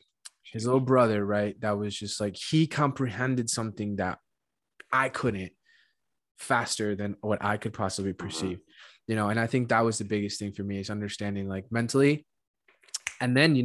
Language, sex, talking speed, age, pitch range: English, male, 175 wpm, 20-39, 100-115 Hz